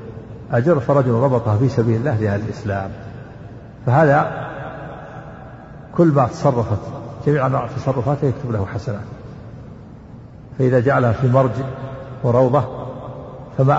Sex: male